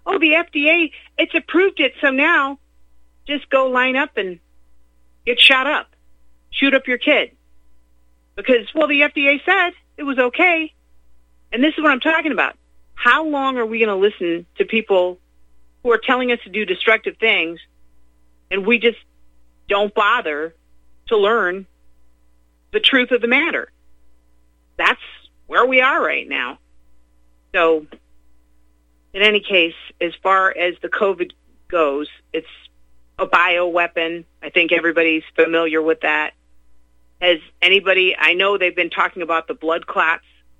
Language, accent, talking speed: English, American, 150 wpm